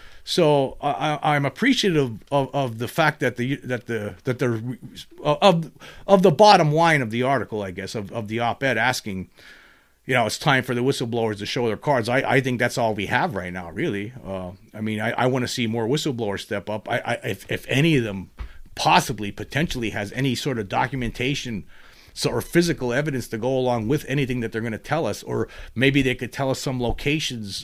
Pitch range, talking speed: 110-145 Hz, 220 wpm